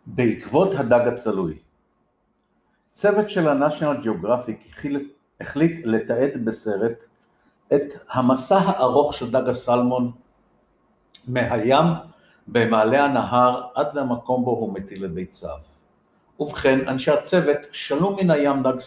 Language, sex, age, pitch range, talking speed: Hebrew, male, 50-69, 125-170 Hz, 100 wpm